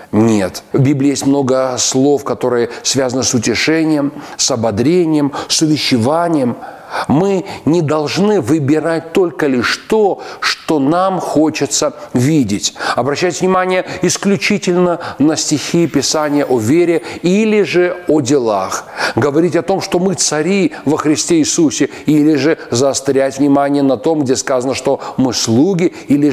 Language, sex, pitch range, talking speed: Russian, male, 135-185 Hz, 130 wpm